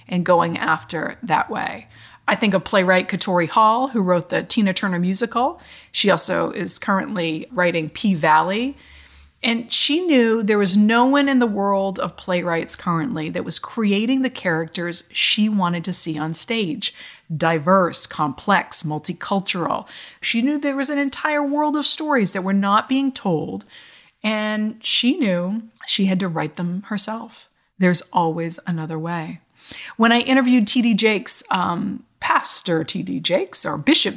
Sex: female